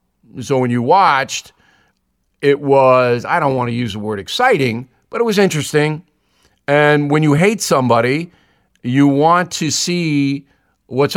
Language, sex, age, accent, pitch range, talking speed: English, male, 50-69, American, 120-150 Hz, 150 wpm